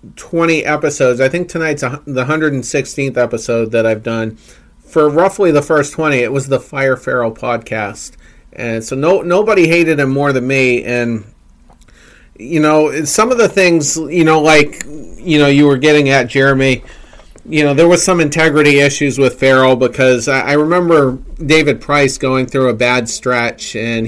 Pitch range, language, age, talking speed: 120-150 Hz, English, 40-59, 175 wpm